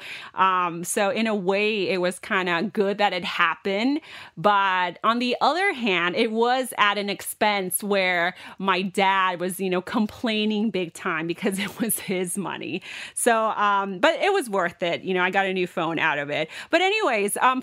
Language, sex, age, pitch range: Thai, female, 30-49, 185-255 Hz